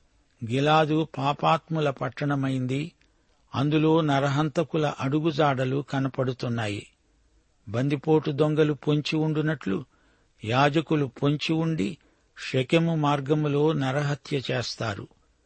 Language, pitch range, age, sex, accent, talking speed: Telugu, 130-155 Hz, 60-79, male, native, 60 wpm